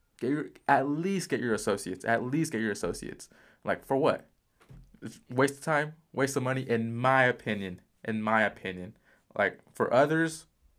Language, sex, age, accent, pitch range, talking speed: English, male, 20-39, American, 110-135 Hz, 165 wpm